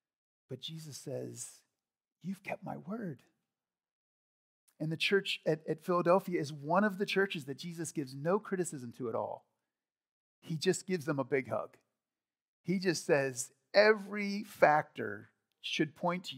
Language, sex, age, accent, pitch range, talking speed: English, male, 40-59, American, 155-210 Hz, 150 wpm